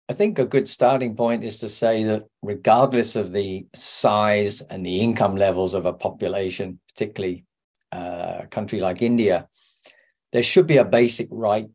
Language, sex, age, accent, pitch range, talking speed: English, male, 40-59, British, 105-130 Hz, 170 wpm